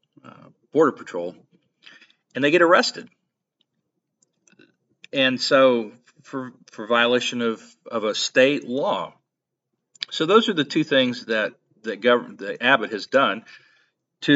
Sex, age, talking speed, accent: male, 40-59, 125 wpm, American